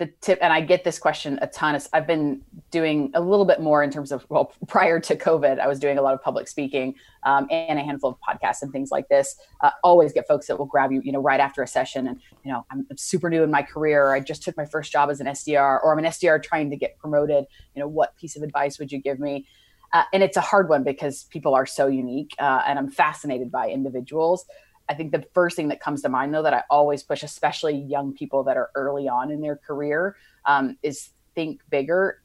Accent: American